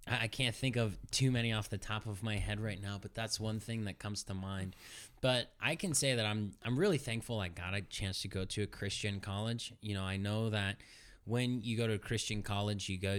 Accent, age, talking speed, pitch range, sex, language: American, 20-39, 250 wpm, 100-125 Hz, male, English